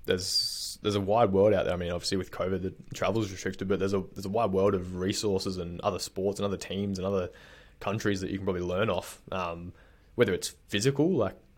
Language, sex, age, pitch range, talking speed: English, male, 20-39, 90-100 Hz, 235 wpm